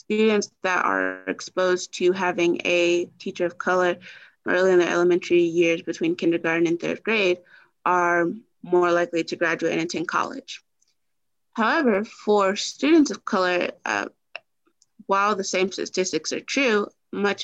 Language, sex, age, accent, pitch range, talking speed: English, female, 30-49, American, 175-200 Hz, 140 wpm